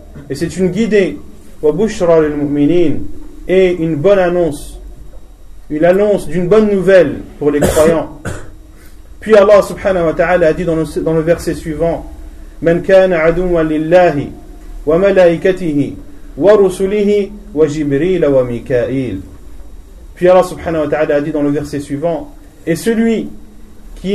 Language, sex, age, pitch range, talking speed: French, male, 40-59, 145-190 Hz, 140 wpm